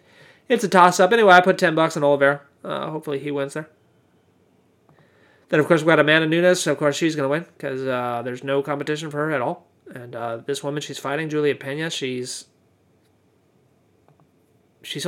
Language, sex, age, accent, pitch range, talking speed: English, male, 30-49, American, 140-180 Hz, 190 wpm